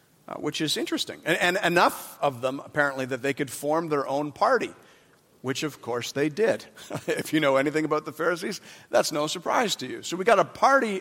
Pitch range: 145-220 Hz